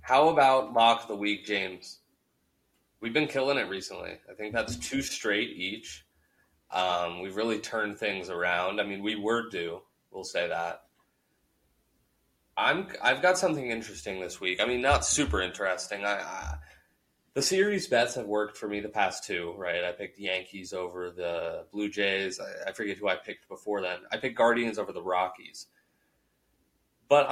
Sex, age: male, 20-39